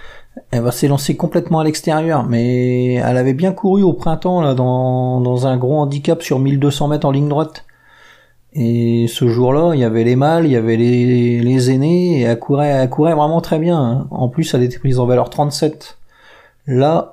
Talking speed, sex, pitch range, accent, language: 200 wpm, male, 125-160 Hz, French, French